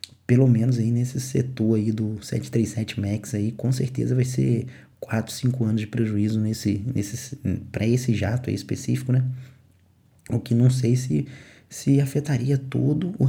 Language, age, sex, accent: English, 20-39, male, Brazilian